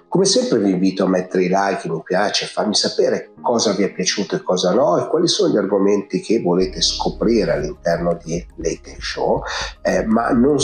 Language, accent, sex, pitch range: Italian, native, male, 90-120 Hz